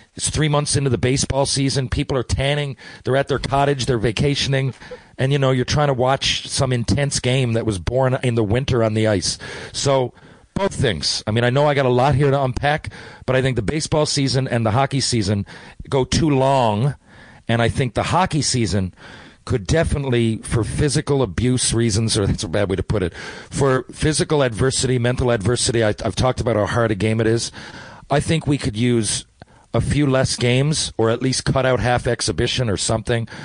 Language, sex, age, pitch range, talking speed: English, male, 40-59, 115-150 Hz, 205 wpm